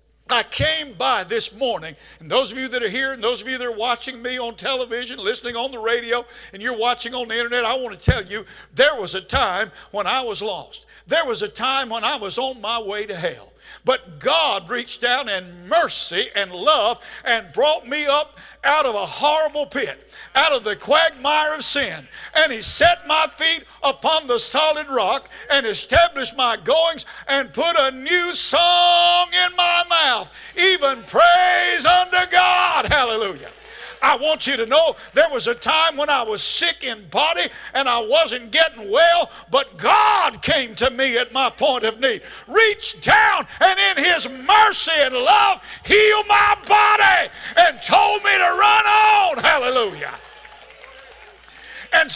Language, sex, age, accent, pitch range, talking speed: English, male, 60-79, American, 240-345 Hz, 180 wpm